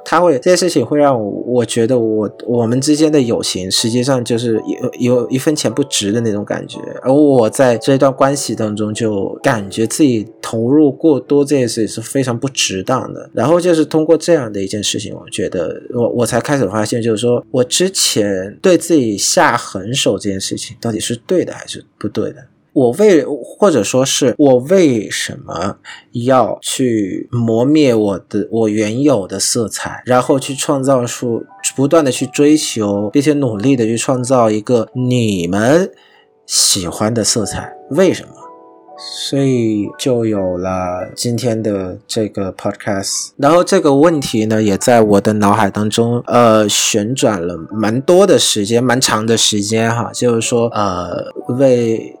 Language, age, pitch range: Vietnamese, 20-39, 105-135 Hz